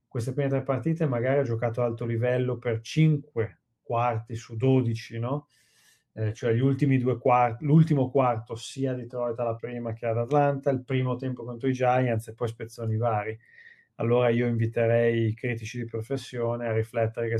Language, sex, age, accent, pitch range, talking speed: Italian, male, 20-39, native, 115-130 Hz, 180 wpm